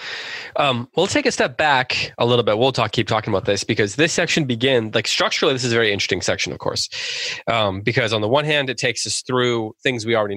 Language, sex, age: English, male, 20-39